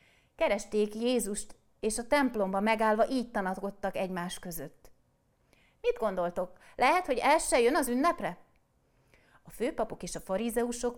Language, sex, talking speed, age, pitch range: Hungarian, female, 130 wpm, 30-49, 175-235 Hz